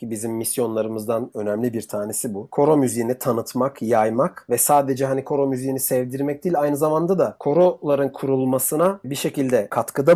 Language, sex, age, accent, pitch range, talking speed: Turkish, male, 40-59, native, 125-155 Hz, 155 wpm